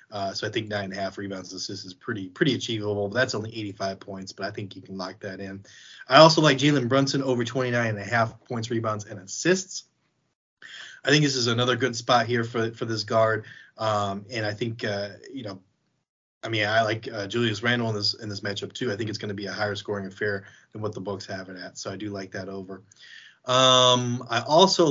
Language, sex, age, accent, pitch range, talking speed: English, male, 20-39, American, 105-125 Hz, 230 wpm